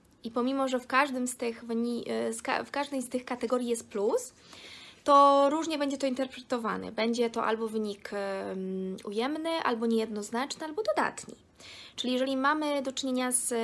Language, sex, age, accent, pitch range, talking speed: Polish, female, 20-39, native, 205-255 Hz, 160 wpm